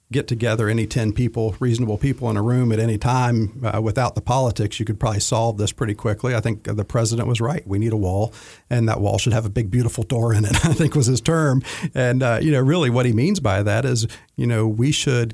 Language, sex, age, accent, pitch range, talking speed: English, male, 50-69, American, 110-130 Hz, 255 wpm